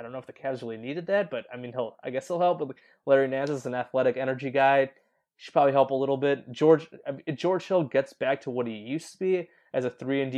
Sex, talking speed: male, 280 wpm